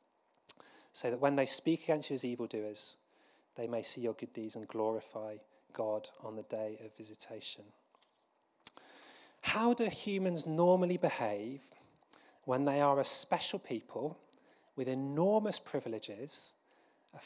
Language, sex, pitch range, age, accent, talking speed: English, male, 120-165 Hz, 30-49, British, 130 wpm